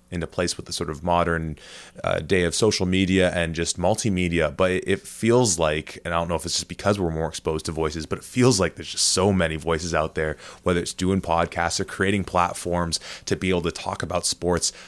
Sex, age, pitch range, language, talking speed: male, 20-39, 85-100 Hz, English, 230 wpm